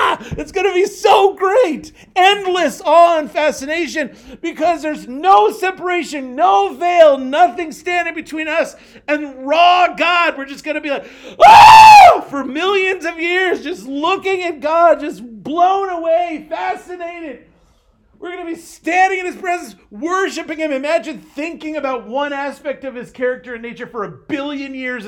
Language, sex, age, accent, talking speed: English, male, 40-59, American, 155 wpm